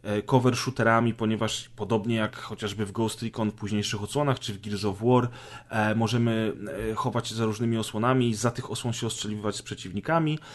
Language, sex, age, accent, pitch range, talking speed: Polish, male, 30-49, native, 110-130 Hz, 170 wpm